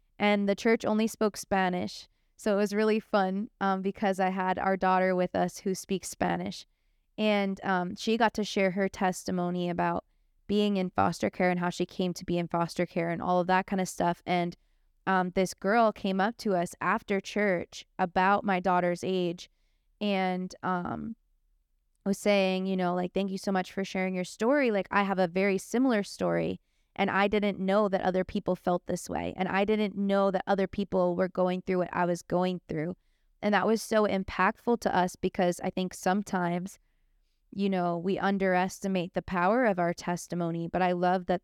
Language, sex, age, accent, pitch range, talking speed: English, female, 20-39, American, 180-200 Hz, 195 wpm